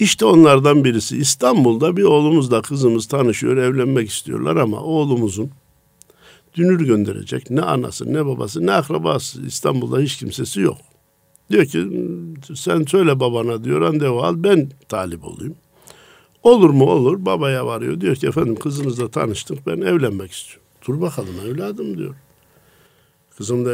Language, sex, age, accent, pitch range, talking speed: Turkish, male, 60-79, native, 120-170 Hz, 135 wpm